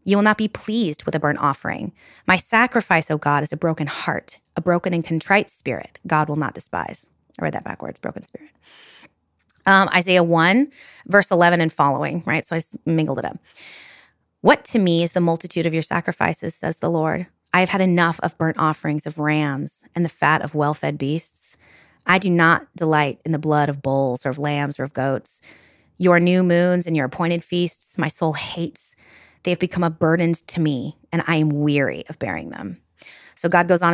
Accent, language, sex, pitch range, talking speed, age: American, English, female, 155-185 Hz, 205 wpm, 30-49